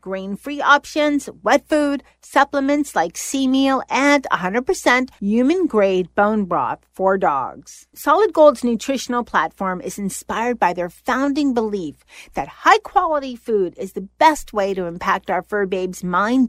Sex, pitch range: female, 190-275 Hz